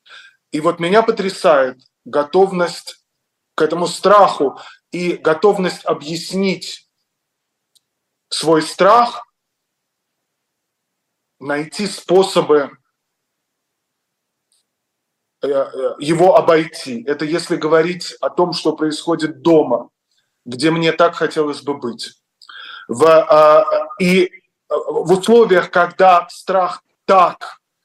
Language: Russian